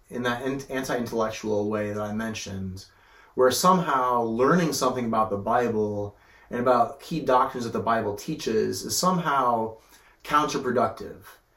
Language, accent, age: English, American, 30-49